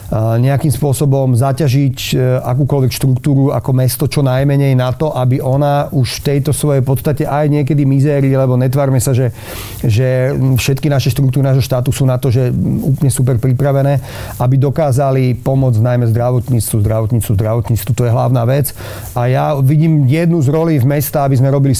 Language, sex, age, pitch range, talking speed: Slovak, male, 40-59, 120-140 Hz, 160 wpm